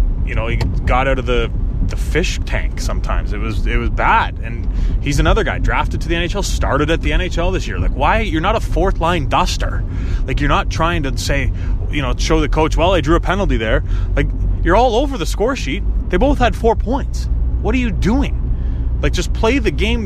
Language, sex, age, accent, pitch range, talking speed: English, male, 20-39, American, 70-120 Hz, 220 wpm